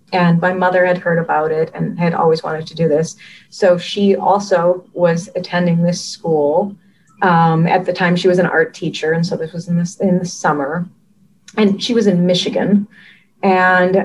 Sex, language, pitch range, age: female, English, 170-200 Hz, 30-49